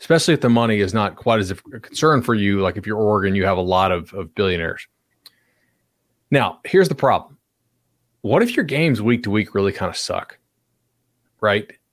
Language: English